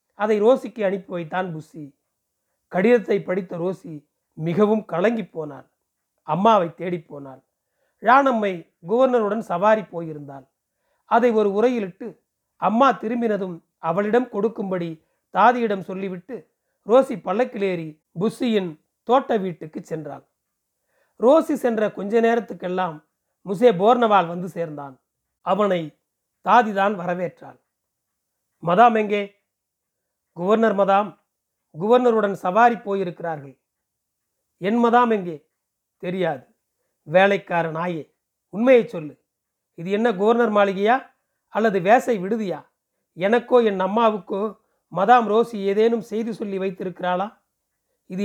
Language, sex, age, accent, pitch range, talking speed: Tamil, male, 40-59, native, 175-225 Hz, 95 wpm